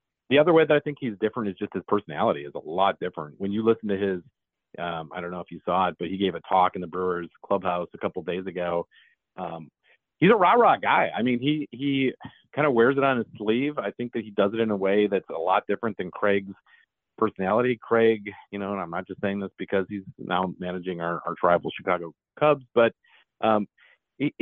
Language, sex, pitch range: English, male, 95-115 Hz